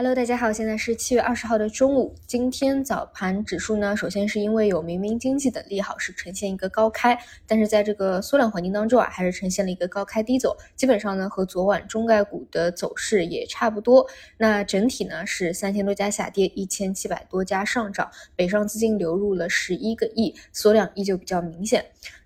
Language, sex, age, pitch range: Chinese, female, 20-39, 195-240 Hz